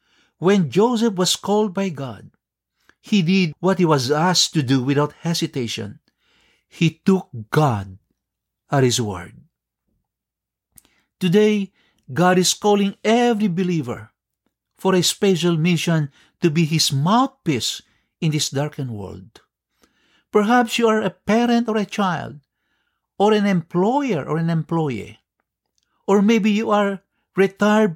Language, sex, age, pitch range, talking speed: English, male, 60-79, 135-195 Hz, 125 wpm